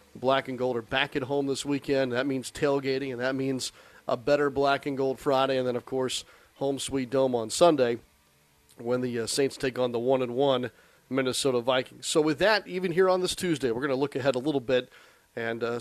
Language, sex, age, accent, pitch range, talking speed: English, male, 40-59, American, 125-140 Hz, 220 wpm